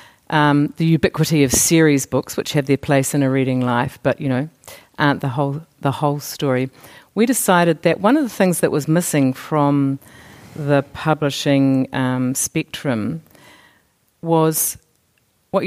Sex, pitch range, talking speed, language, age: female, 135-160 Hz, 150 wpm, English, 50-69